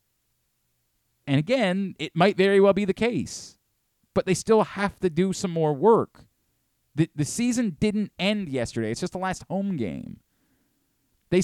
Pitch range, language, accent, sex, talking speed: 115-160 Hz, English, American, male, 165 wpm